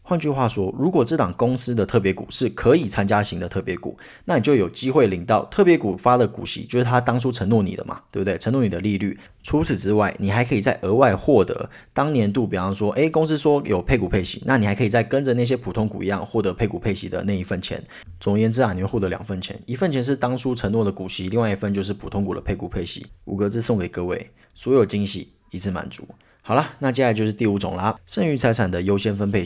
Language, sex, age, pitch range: Chinese, male, 30-49, 100-125 Hz